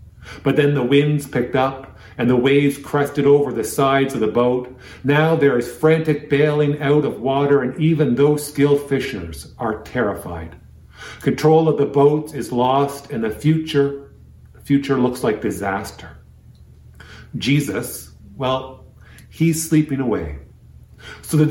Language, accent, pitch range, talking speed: English, American, 115-145 Hz, 140 wpm